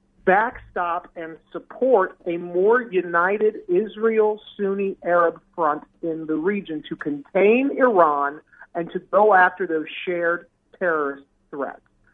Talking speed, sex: 110 wpm, male